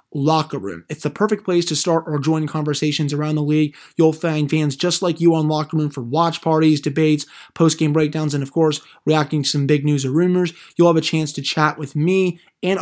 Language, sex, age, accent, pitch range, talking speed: English, male, 20-39, American, 150-175 Hz, 225 wpm